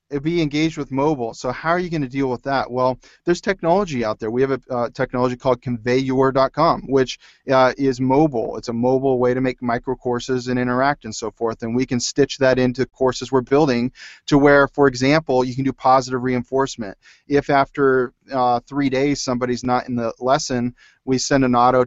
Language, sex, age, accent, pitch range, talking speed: English, male, 30-49, American, 125-145 Hz, 205 wpm